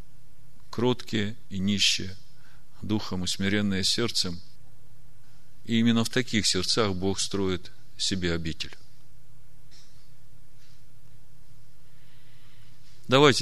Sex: male